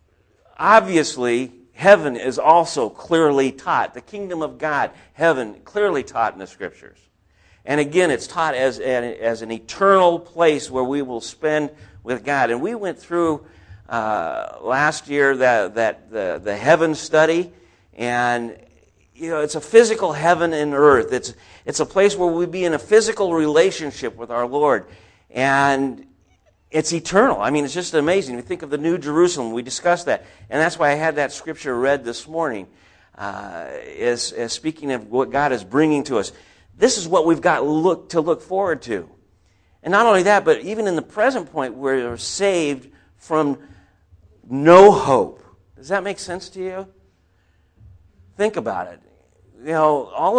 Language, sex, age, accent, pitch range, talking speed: English, male, 50-69, American, 120-175 Hz, 170 wpm